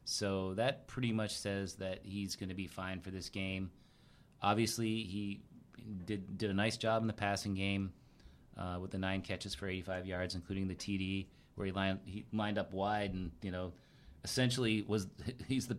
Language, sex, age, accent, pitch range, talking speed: English, male, 30-49, American, 95-105 Hz, 190 wpm